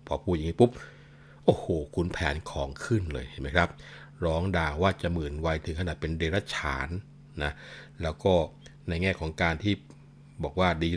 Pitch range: 75-95 Hz